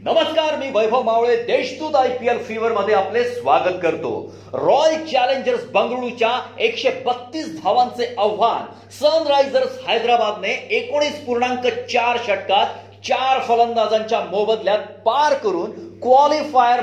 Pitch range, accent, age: 225-280 Hz, native, 40-59